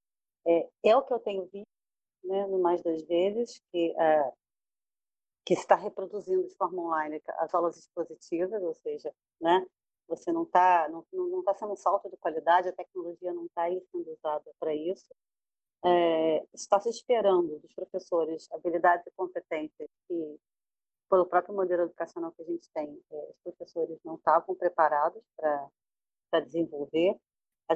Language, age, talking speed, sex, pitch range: Portuguese, 40-59, 150 wpm, female, 160-195 Hz